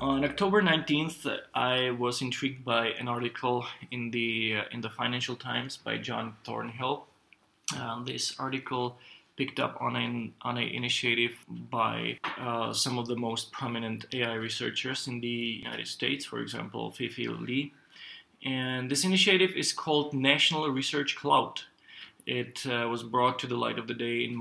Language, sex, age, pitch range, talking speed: English, male, 20-39, 120-140 Hz, 160 wpm